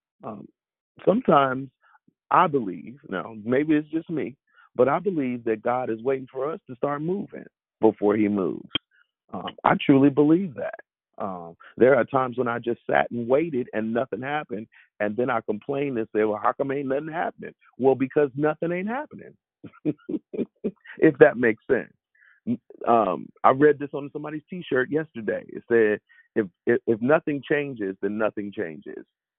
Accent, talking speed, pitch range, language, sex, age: American, 165 wpm, 110-155 Hz, English, male, 40-59